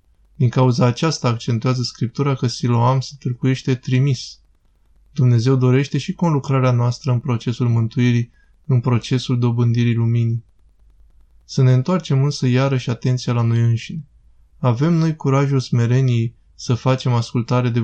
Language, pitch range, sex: Romanian, 120-135 Hz, male